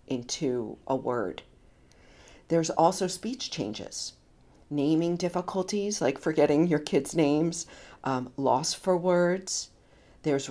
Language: English